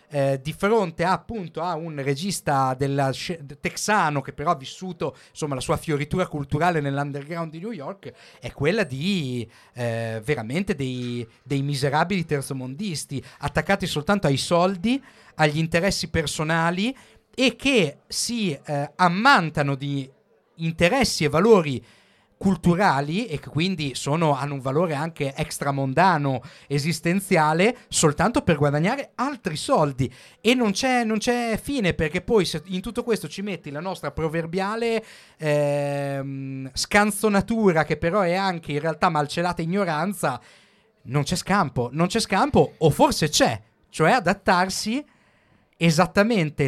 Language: Italian